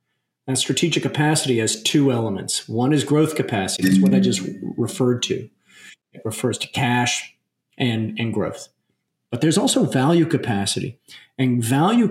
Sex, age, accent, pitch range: male, 40-59, American, 120-150 Hz